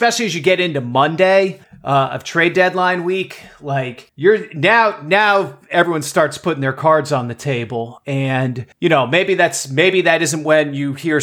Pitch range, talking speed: 145-180 Hz, 180 wpm